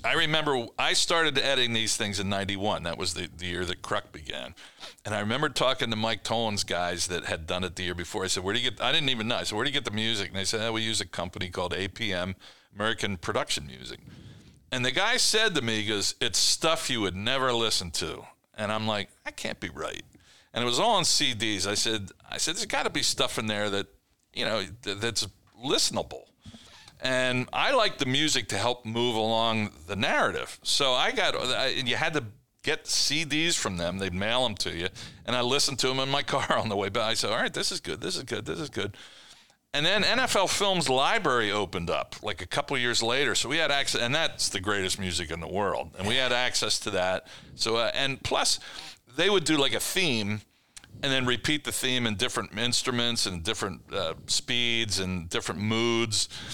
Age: 50-69